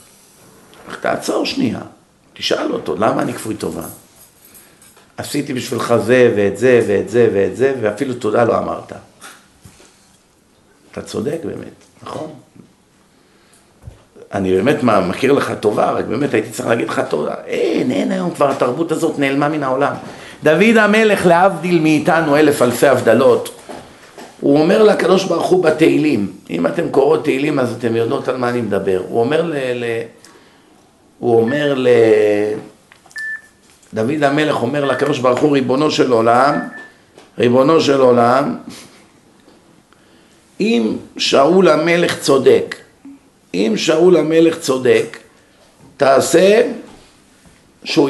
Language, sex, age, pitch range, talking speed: Hebrew, male, 50-69, 120-175 Hz, 125 wpm